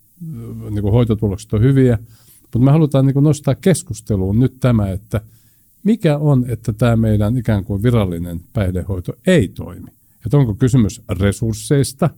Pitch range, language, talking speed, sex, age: 105-135 Hz, Finnish, 140 wpm, male, 50-69